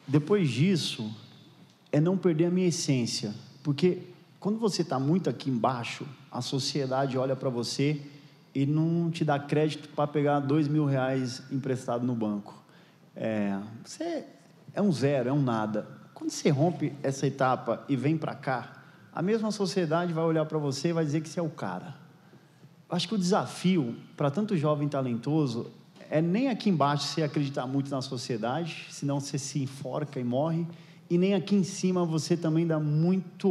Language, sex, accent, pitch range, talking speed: Portuguese, male, Brazilian, 135-165 Hz, 175 wpm